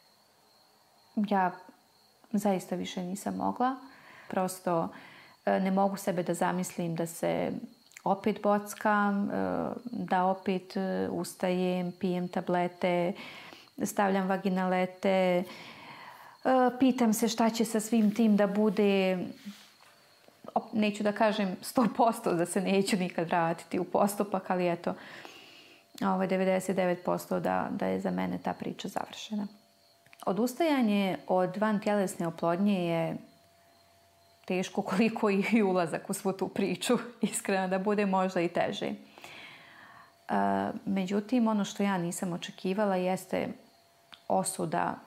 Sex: female